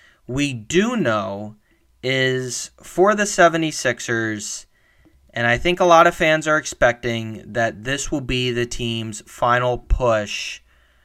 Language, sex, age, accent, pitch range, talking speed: English, male, 20-39, American, 110-135 Hz, 130 wpm